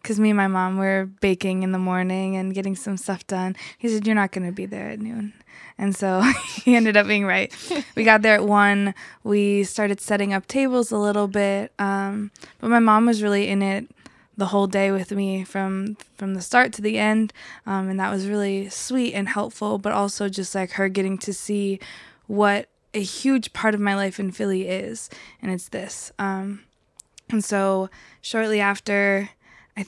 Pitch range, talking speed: 195-210 Hz, 200 wpm